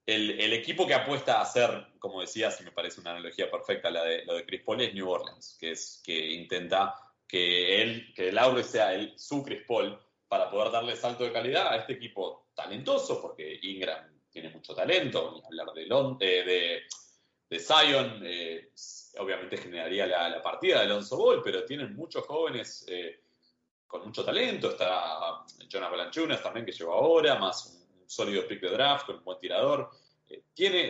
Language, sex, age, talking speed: Spanish, male, 30-49, 185 wpm